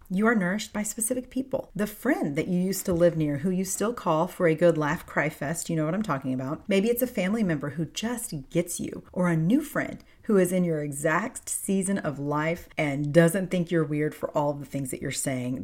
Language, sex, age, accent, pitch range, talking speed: English, female, 40-59, American, 155-210 Hz, 240 wpm